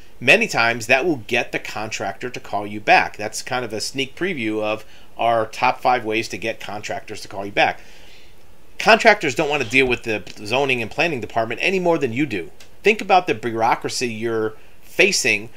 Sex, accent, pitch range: male, American, 105-140 Hz